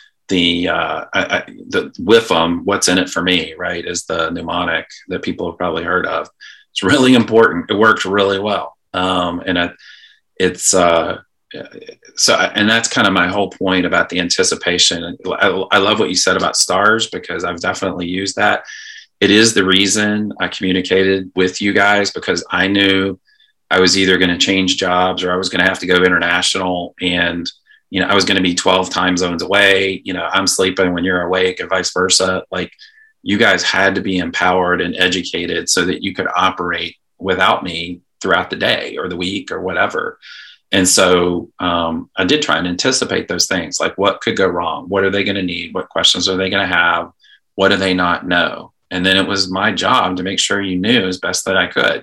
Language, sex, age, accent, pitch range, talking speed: English, male, 30-49, American, 90-100 Hz, 210 wpm